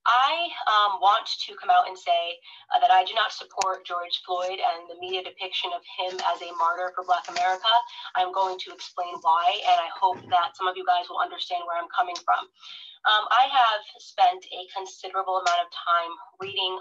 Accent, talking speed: American, 205 wpm